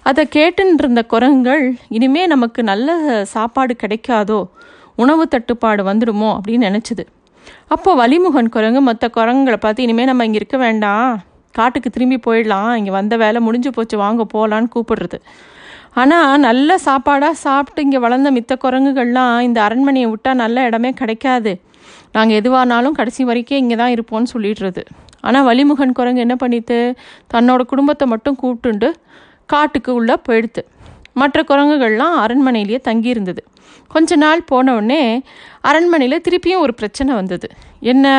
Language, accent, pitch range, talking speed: Tamil, native, 230-285 Hz, 125 wpm